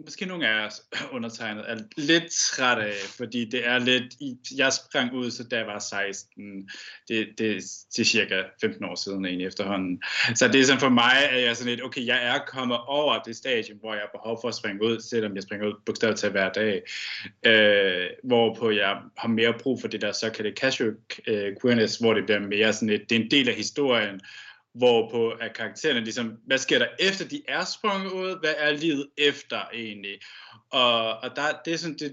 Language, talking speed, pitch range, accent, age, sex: Danish, 215 wpm, 110-130 Hz, native, 20-39, male